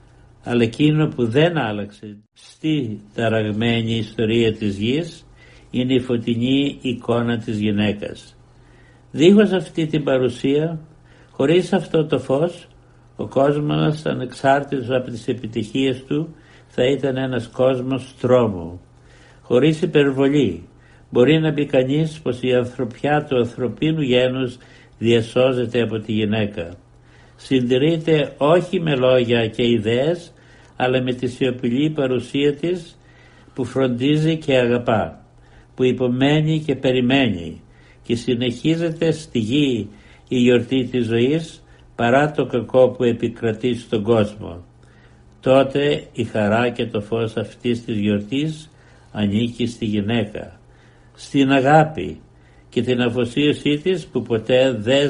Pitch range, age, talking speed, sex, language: 115-140 Hz, 60-79, 120 wpm, male, Greek